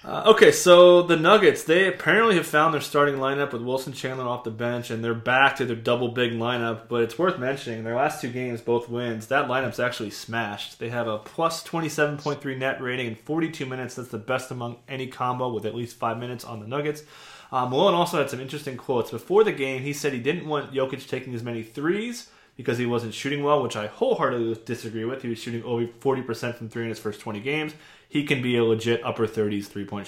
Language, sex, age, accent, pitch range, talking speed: English, male, 20-39, American, 115-145 Hz, 225 wpm